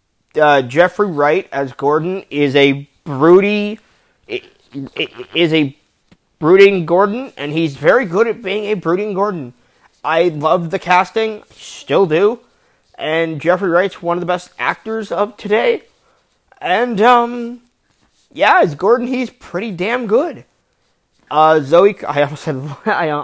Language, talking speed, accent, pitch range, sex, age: English, 135 wpm, American, 150-210 Hz, male, 30-49